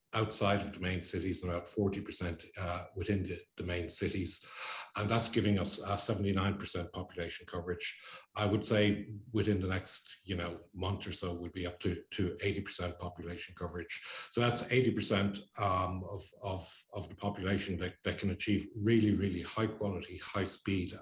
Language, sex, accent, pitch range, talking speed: English, male, Irish, 90-105 Hz, 170 wpm